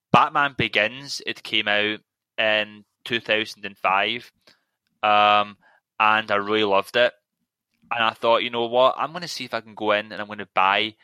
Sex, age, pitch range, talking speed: male, 10-29, 105-120 Hz, 180 wpm